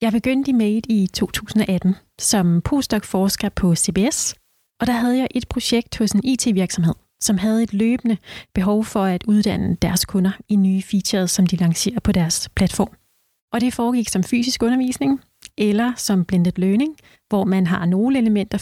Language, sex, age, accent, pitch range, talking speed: Danish, female, 30-49, native, 190-220 Hz, 170 wpm